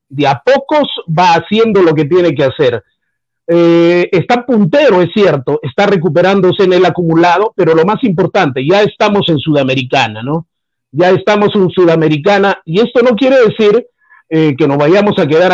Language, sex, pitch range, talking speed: Spanish, male, 155-215 Hz, 170 wpm